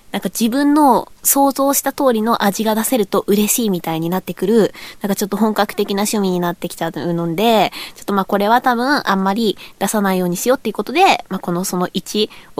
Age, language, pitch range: 20-39, Japanese, 185-230 Hz